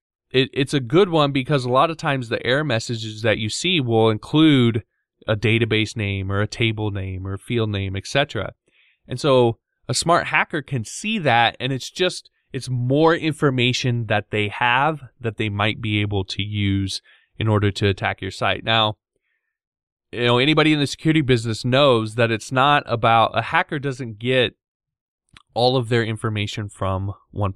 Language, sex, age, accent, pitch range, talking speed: English, male, 20-39, American, 105-130 Hz, 180 wpm